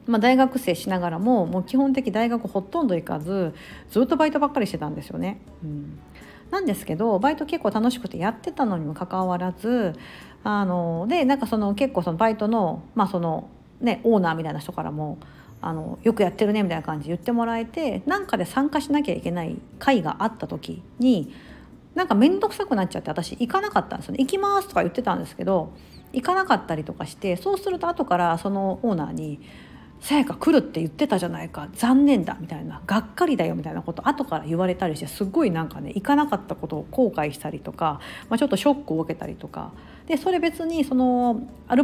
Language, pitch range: Japanese, 180-290 Hz